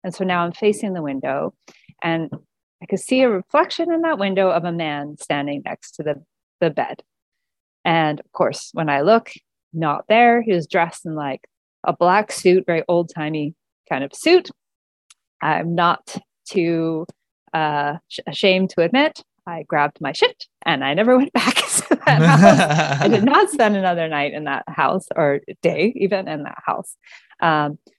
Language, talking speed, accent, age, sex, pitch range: English, 180 wpm, American, 30-49, female, 150-205 Hz